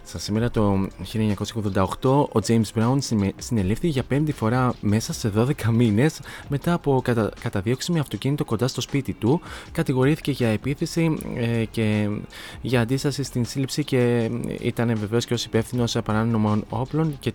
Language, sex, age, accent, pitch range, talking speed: Greek, male, 20-39, native, 105-130 Hz, 140 wpm